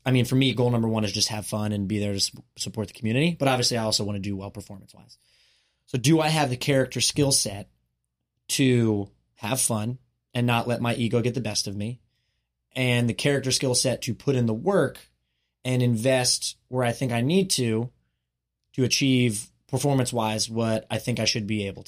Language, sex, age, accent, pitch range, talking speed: English, male, 20-39, American, 110-130 Hz, 210 wpm